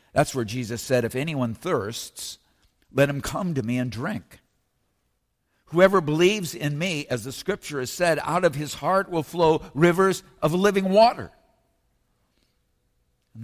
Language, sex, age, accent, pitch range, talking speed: English, male, 50-69, American, 130-180 Hz, 150 wpm